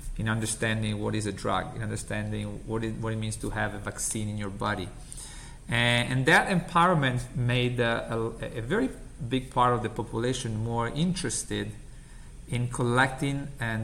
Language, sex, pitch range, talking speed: English, male, 110-130 Hz, 170 wpm